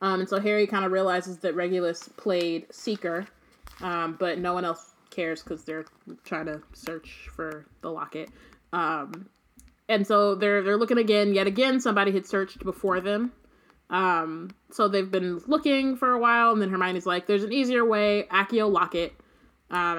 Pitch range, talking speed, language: 175-220 Hz, 175 wpm, English